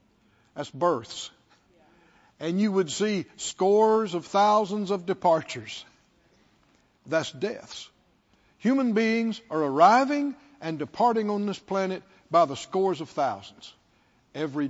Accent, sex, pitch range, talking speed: American, male, 170-245 Hz, 115 wpm